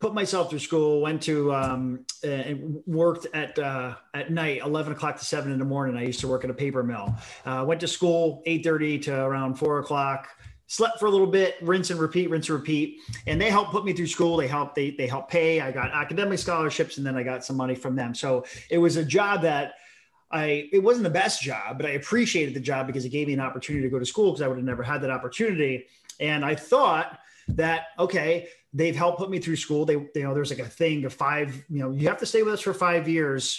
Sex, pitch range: male, 135-170 Hz